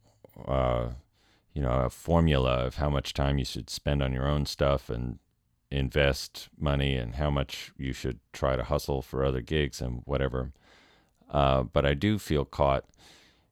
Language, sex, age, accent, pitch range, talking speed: English, male, 40-59, American, 65-85 Hz, 170 wpm